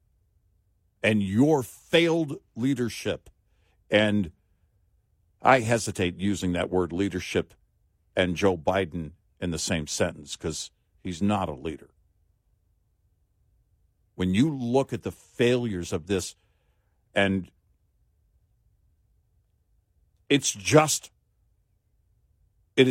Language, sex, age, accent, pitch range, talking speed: English, male, 50-69, American, 90-120 Hz, 90 wpm